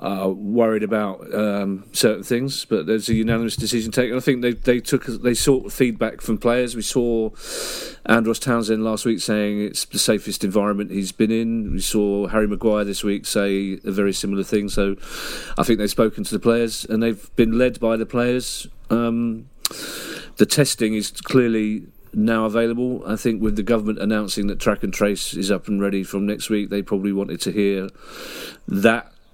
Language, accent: English, British